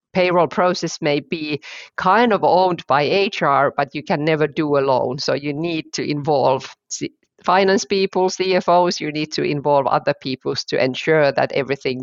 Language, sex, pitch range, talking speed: English, female, 150-200 Hz, 170 wpm